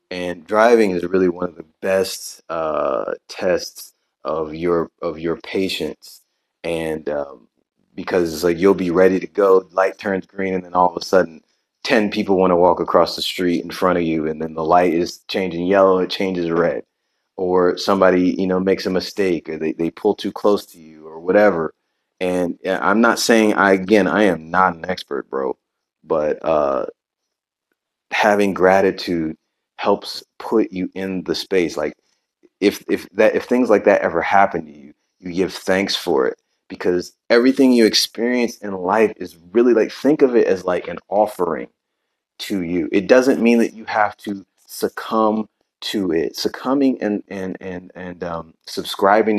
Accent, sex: American, male